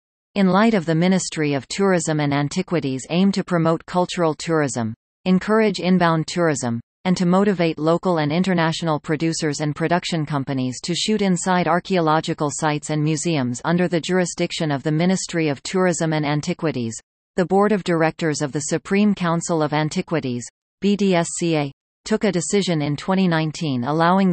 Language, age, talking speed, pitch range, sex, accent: English, 40-59, 150 wpm, 150-180 Hz, female, American